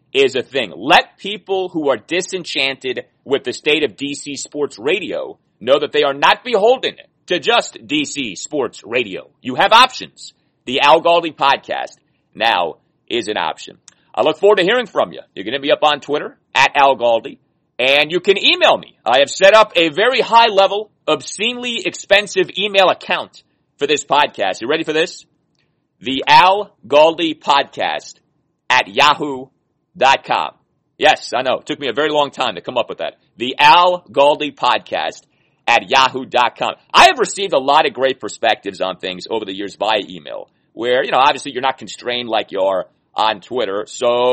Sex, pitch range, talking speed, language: male, 135-205 Hz, 180 wpm, English